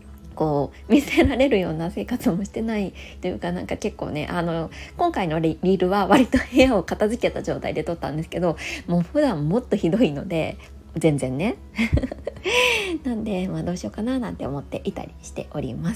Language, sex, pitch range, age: Japanese, female, 160-245 Hz, 20-39